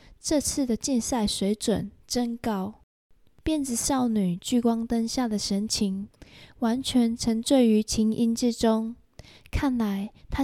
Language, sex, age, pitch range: Chinese, female, 10-29, 210-265 Hz